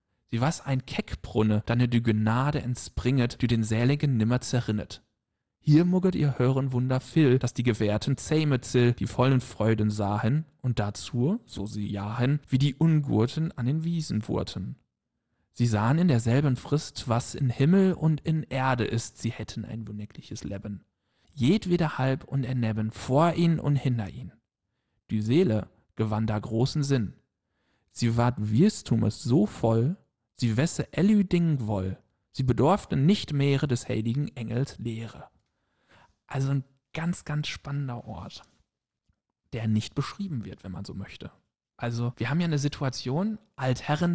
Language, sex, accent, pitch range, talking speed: German, male, German, 110-145 Hz, 150 wpm